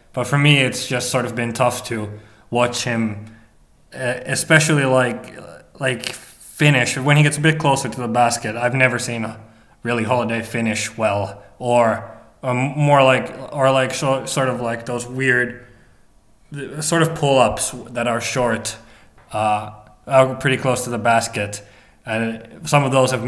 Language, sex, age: English, male, 20-39